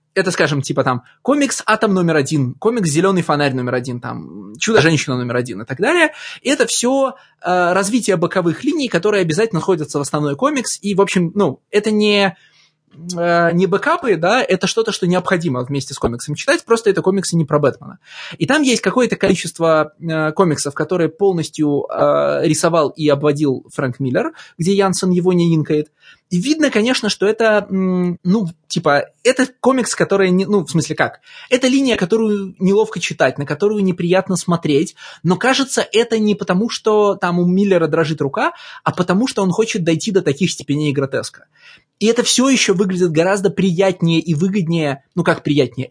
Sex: male